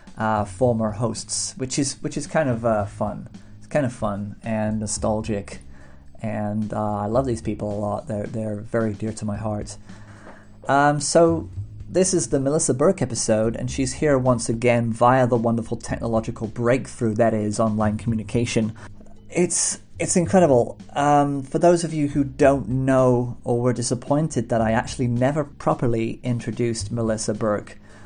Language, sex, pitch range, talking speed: English, male, 105-135 Hz, 165 wpm